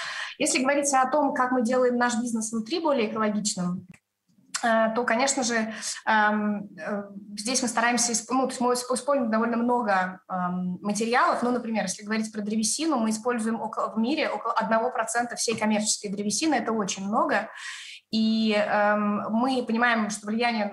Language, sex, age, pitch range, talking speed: Russian, female, 20-39, 200-240 Hz, 135 wpm